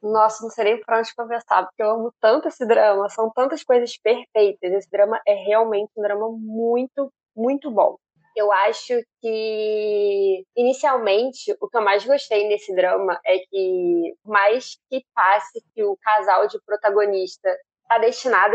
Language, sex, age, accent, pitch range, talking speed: Portuguese, female, 20-39, Brazilian, 220-300 Hz, 155 wpm